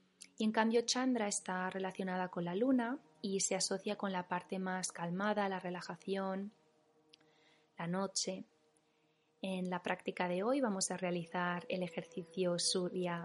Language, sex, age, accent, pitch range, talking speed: English, female, 20-39, Spanish, 175-205 Hz, 145 wpm